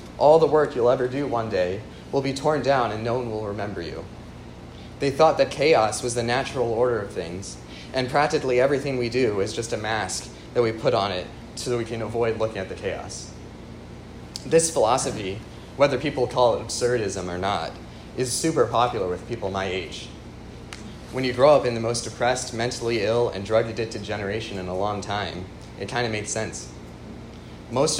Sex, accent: male, American